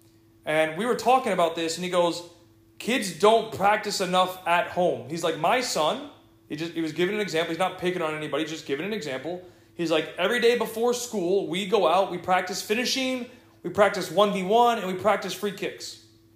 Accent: American